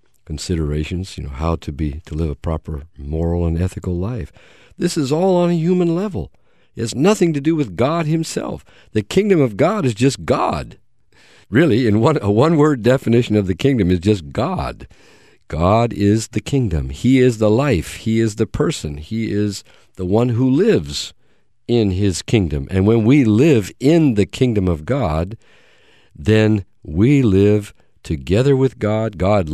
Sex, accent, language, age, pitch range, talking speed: male, American, English, 50-69, 85-130 Hz, 175 wpm